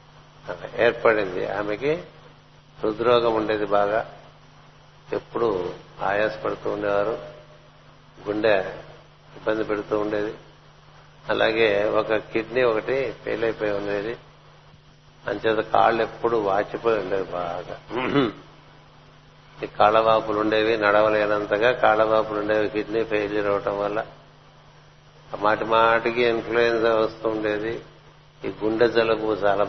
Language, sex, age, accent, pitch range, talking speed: Telugu, male, 60-79, native, 105-115 Hz, 85 wpm